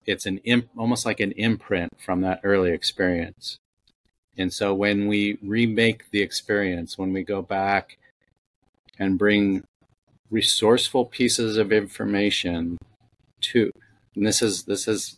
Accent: American